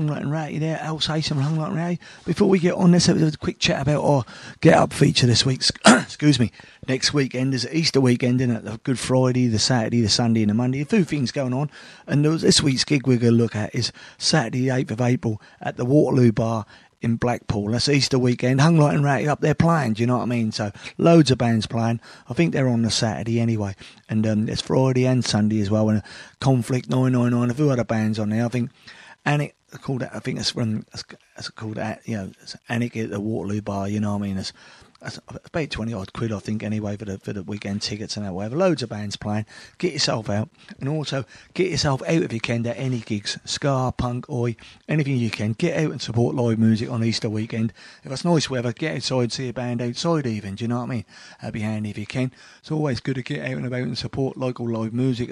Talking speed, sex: 245 wpm, male